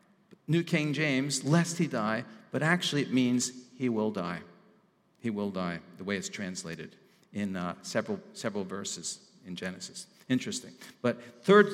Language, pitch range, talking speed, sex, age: English, 115-180 Hz, 155 wpm, male, 50-69